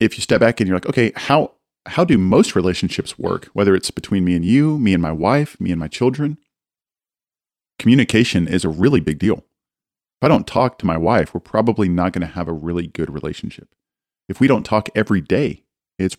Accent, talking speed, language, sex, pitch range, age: American, 215 wpm, English, male, 90-110 Hz, 40-59